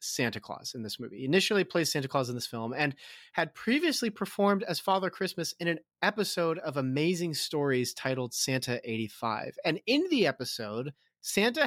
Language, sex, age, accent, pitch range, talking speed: English, male, 30-49, American, 140-200 Hz, 175 wpm